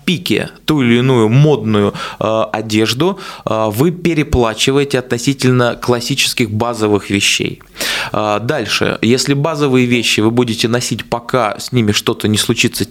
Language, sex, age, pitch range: Russian, male, 20-39, 110-140 Hz